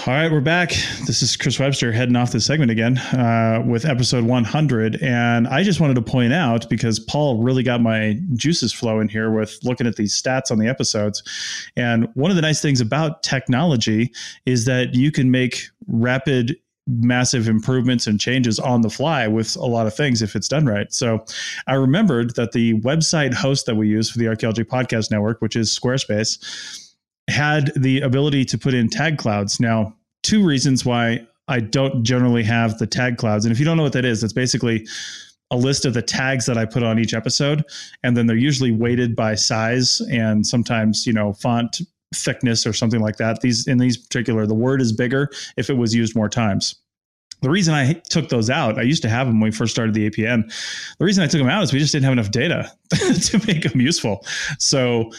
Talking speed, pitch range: 210 wpm, 115-135 Hz